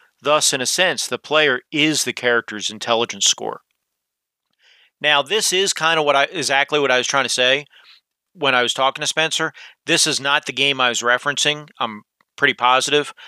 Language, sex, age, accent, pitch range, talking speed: English, male, 40-59, American, 125-160 Hz, 190 wpm